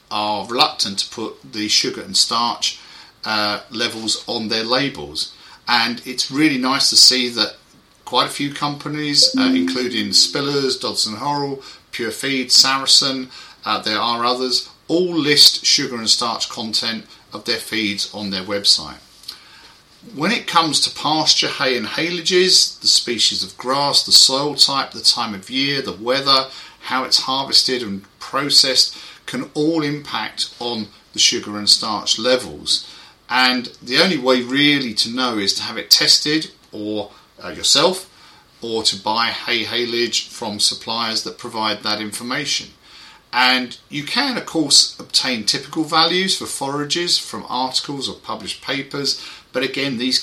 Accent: British